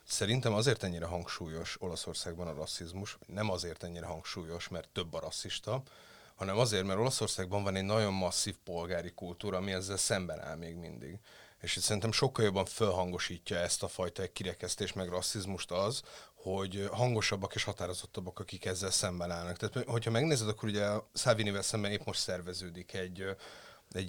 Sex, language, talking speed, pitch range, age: male, Hungarian, 160 wpm, 90-105 Hz, 30-49